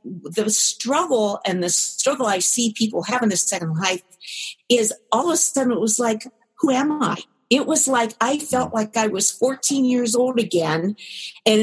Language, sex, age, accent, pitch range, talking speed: English, female, 50-69, American, 170-225 Hz, 185 wpm